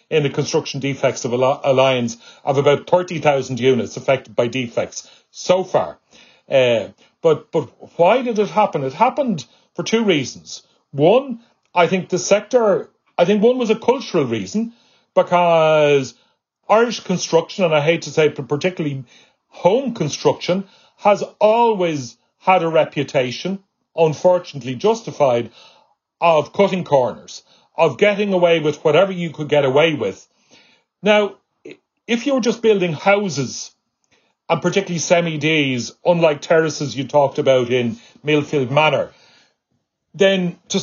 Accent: Irish